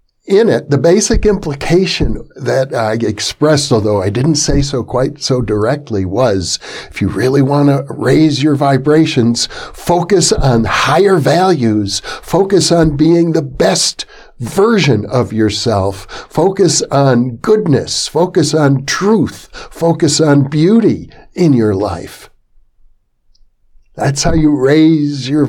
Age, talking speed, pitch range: 60-79, 125 wpm, 125-180 Hz